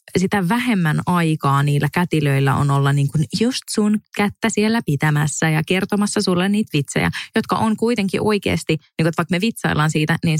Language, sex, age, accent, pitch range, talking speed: Finnish, female, 20-39, native, 150-190 Hz, 160 wpm